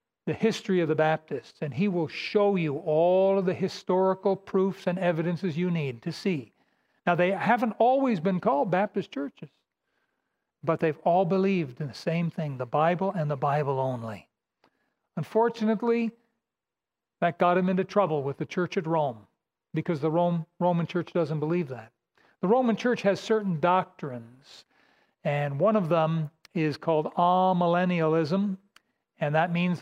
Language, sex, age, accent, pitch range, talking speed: English, male, 60-79, American, 160-200 Hz, 155 wpm